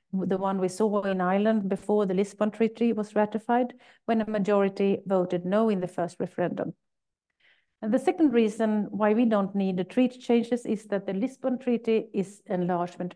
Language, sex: English, female